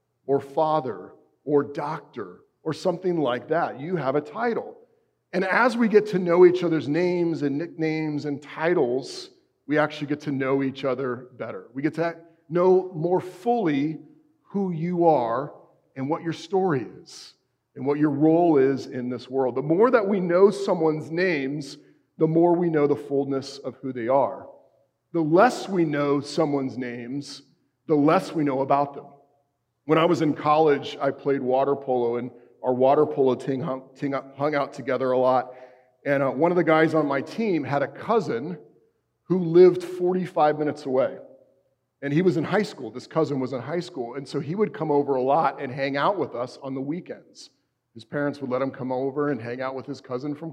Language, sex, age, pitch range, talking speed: English, male, 40-59, 135-170 Hz, 190 wpm